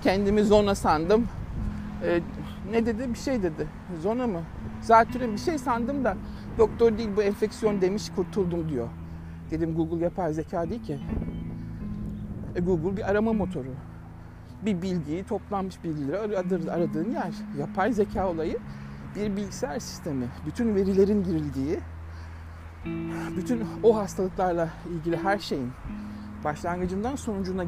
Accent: native